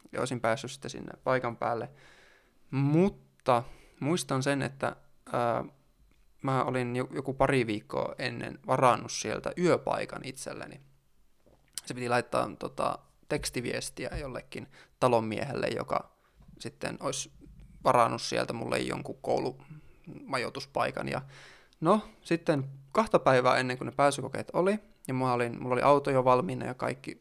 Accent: native